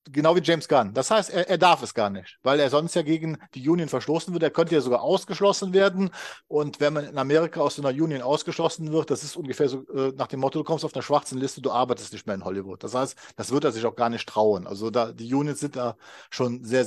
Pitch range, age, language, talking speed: 125-160 Hz, 50-69, German, 270 wpm